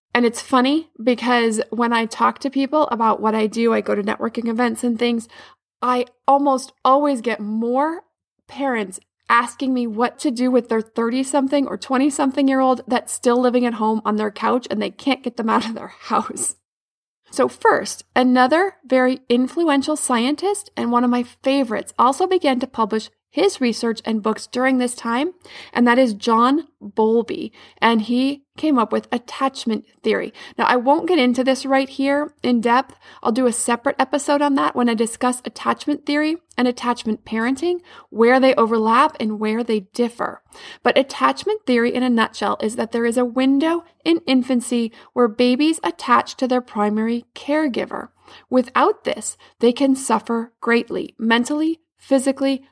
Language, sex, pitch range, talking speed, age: English, female, 235-275 Hz, 170 wpm, 20-39